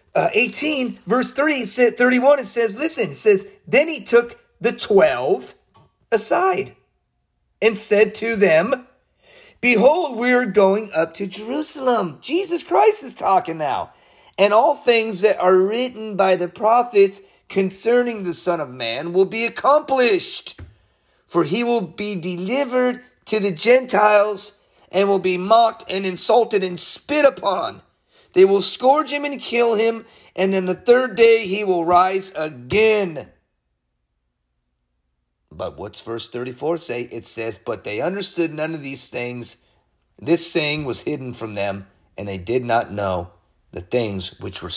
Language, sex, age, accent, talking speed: English, male, 40-59, American, 145 wpm